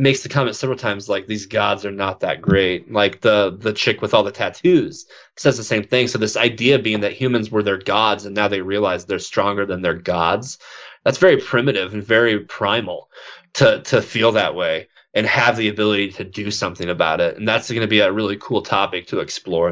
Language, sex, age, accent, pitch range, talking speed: English, male, 20-39, American, 105-120 Hz, 220 wpm